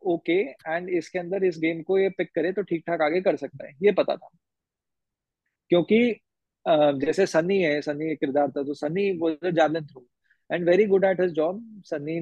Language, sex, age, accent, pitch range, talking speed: Hindi, male, 20-39, native, 150-190 Hz, 190 wpm